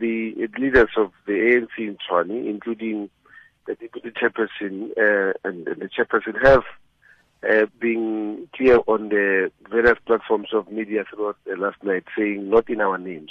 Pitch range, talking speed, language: 105-135 Hz, 160 wpm, English